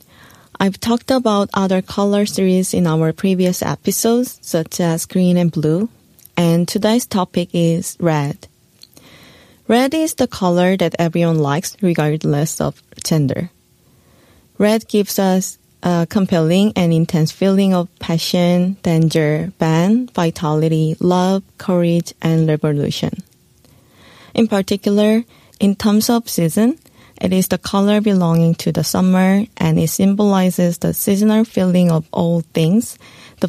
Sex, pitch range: female, 170-205 Hz